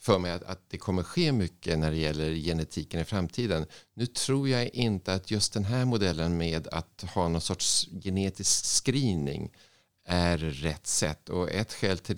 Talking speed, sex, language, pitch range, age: 180 wpm, male, Swedish, 80-105 Hz, 50-69